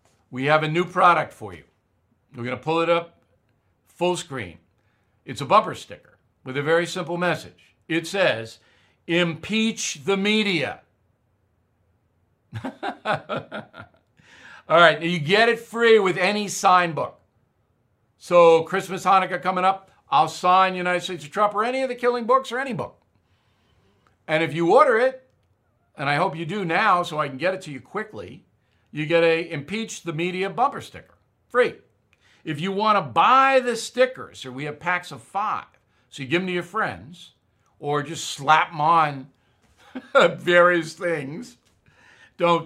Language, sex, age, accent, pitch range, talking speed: English, male, 60-79, American, 120-190 Hz, 165 wpm